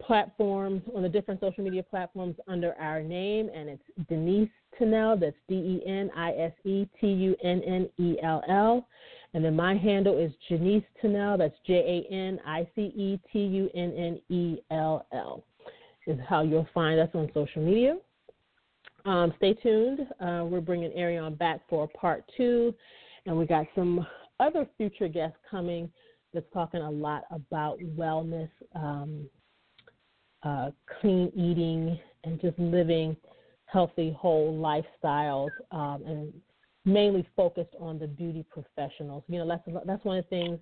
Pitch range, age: 155-190 Hz, 30-49